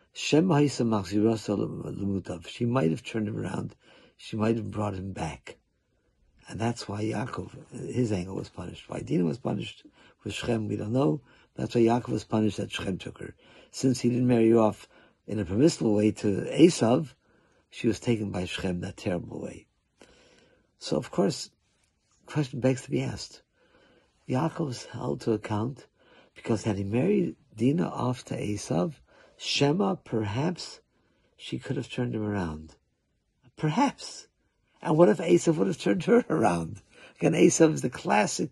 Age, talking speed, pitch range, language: 50-69, 160 wpm, 105-145 Hz, English